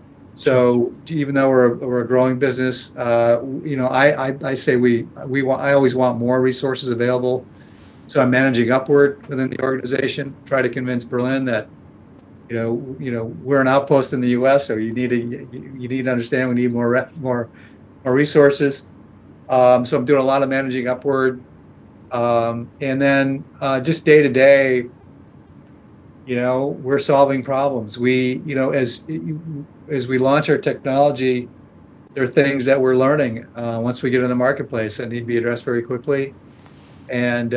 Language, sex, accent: English, male, American